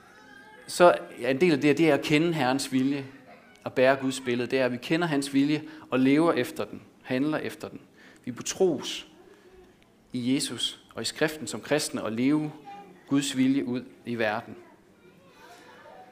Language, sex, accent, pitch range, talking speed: Danish, male, native, 120-150 Hz, 170 wpm